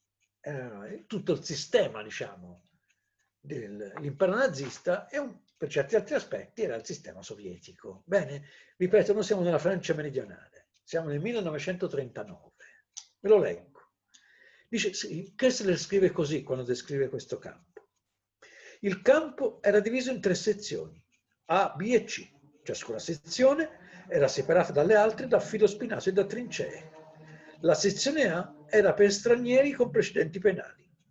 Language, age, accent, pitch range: English, 60-79, Italian, 165-250 Hz